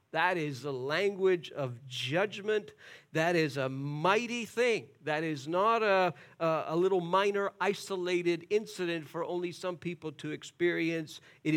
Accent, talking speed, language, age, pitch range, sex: American, 140 wpm, English, 50-69, 155-215 Hz, male